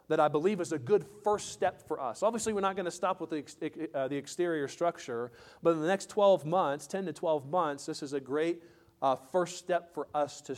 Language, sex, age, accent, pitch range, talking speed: English, male, 40-59, American, 135-170 Hz, 235 wpm